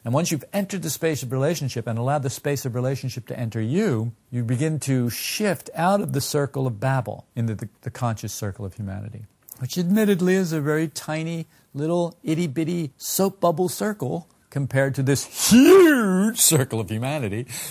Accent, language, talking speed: American, English, 175 wpm